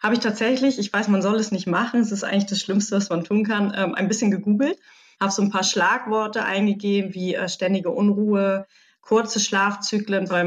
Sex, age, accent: female, 20-39, German